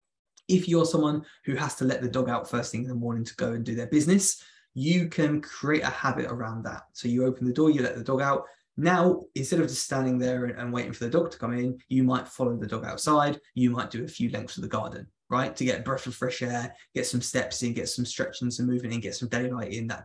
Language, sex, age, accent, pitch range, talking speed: English, male, 20-39, British, 120-145 Hz, 270 wpm